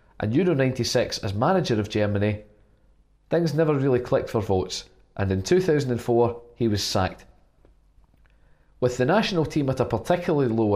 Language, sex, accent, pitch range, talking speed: English, male, British, 100-145 Hz, 150 wpm